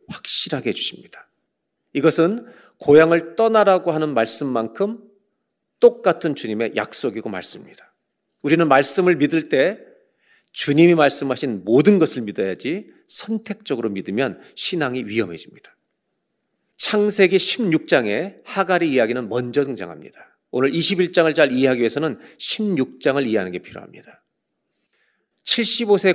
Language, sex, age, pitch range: Korean, male, 40-59, 125-185 Hz